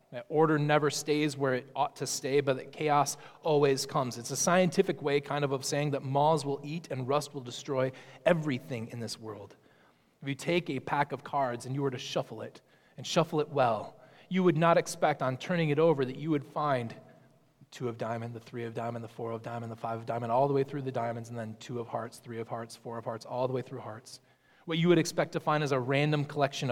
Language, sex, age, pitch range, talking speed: English, male, 30-49, 125-155 Hz, 245 wpm